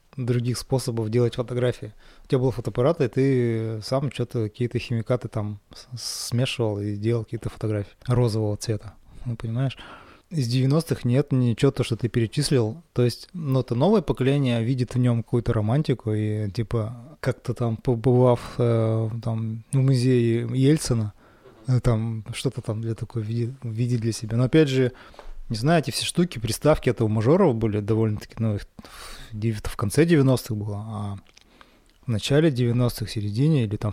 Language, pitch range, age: Russian, 110-130 Hz, 20-39